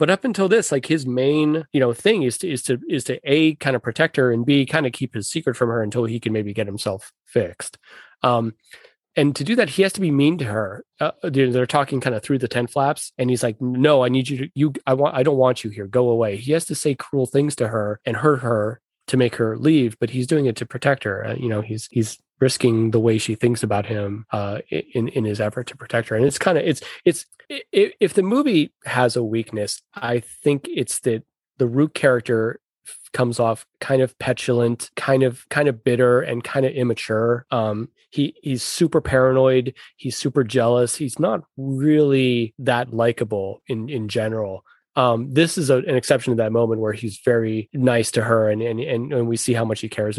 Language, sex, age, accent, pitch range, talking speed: English, male, 30-49, American, 115-140 Hz, 230 wpm